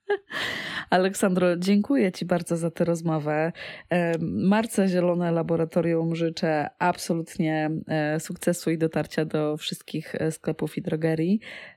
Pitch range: 150-185 Hz